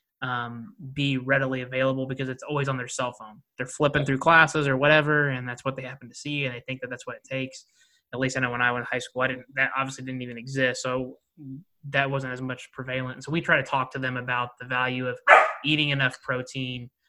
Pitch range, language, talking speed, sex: 130-150 Hz, English, 245 wpm, male